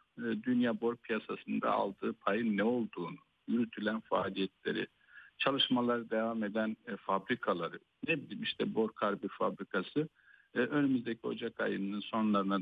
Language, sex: Turkish, male